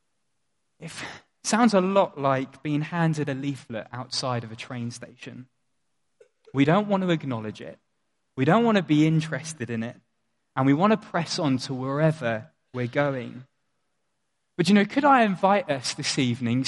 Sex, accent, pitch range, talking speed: male, British, 130-170 Hz, 170 wpm